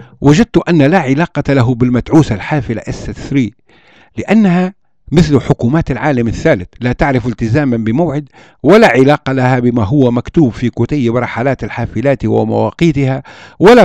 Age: 60-79